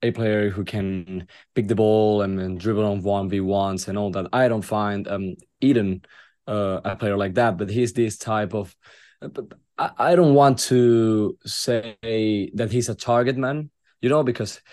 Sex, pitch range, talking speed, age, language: male, 100-115 Hz, 185 wpm, 20-39, English